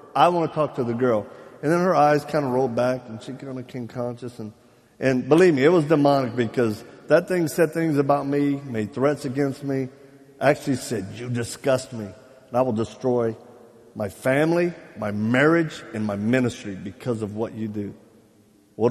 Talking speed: 195 wpm